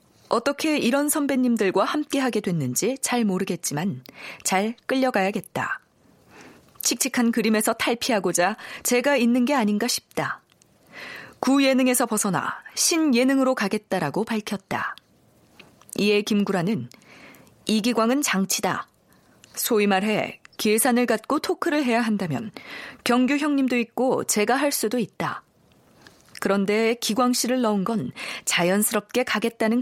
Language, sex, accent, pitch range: Korean, female, native, 205-260 Hz